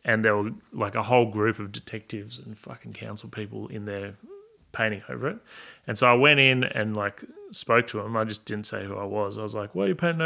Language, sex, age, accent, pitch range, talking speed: English, male, 20-39, Australian, 105-140 Hz, 245 wpm